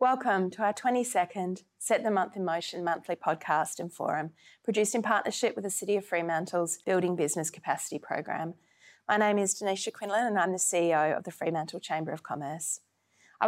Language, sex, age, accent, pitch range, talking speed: English, female, 30-49, Australian, 170-210 Hz, 185 wpm